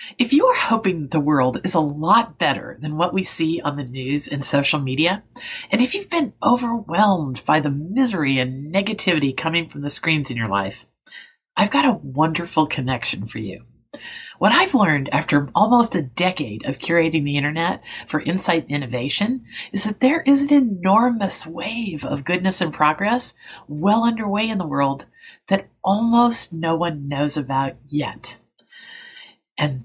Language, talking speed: English, 165 wpm